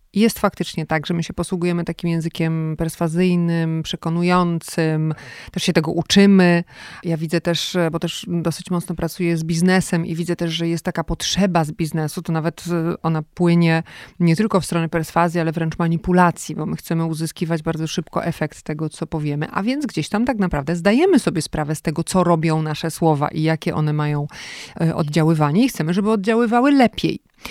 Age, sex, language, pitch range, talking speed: 30-49, female, Polish, 165-200 Hz, 175 wpm